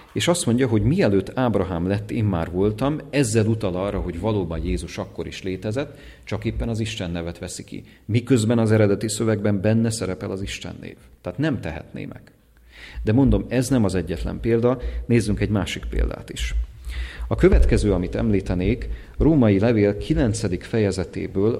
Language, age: English, 40-59